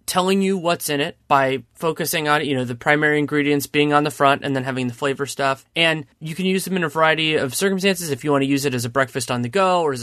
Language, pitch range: English, 130-155 Hz